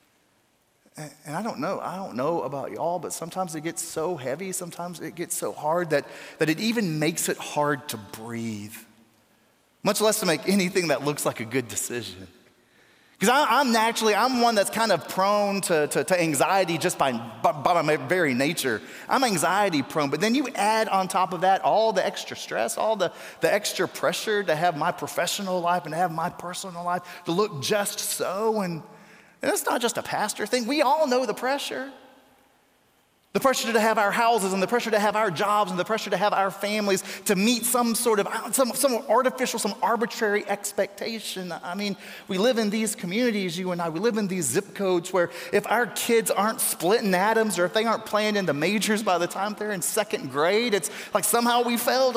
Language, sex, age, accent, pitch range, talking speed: English, male, 30-49, American, 175-220 Hz, 205 wpm